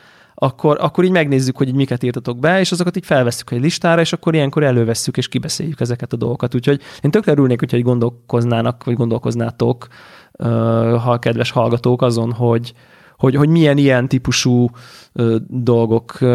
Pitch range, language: 120-150 Hz, Hungarian